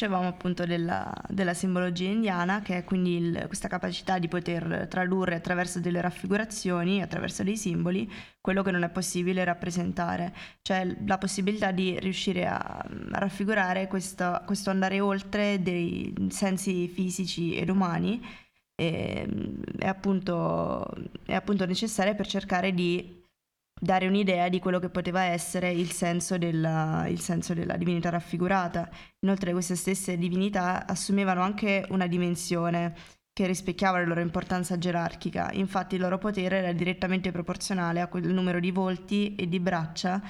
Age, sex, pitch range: 20-39, female, 175-190 Hz